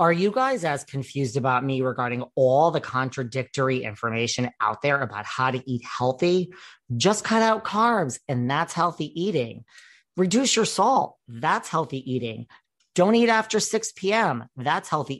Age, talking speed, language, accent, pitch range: 40-59, 160 wpm, English, American, 130-175 Hz